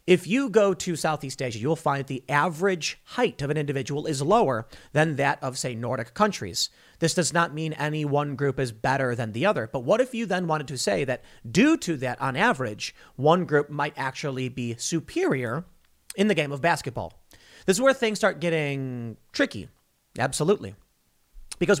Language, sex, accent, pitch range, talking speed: English, male, American, 135-180 Hz, 185 wpm